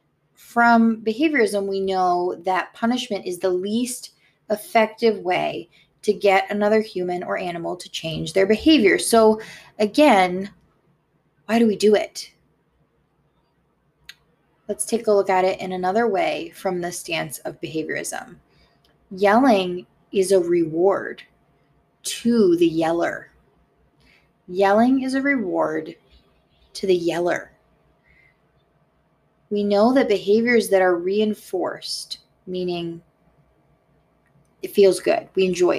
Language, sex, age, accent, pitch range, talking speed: English, female, 20-39, American, 185-230 Hz, 115 wpm